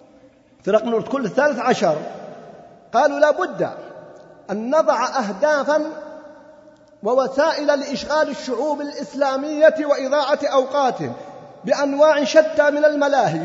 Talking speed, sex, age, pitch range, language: 95 wpm, male, 40-59, 185-280 Hz, Arabic